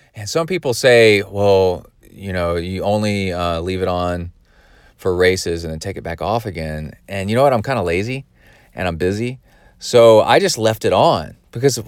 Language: English